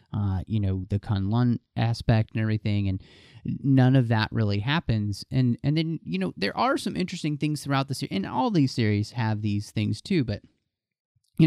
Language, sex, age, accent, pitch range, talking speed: English, male, 30-49, American, 105-125 Hz, 195 wpm